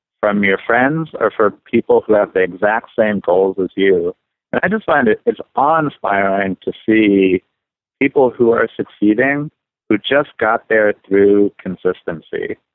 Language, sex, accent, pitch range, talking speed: English, male, American, 95-115 Hz, 160 wpm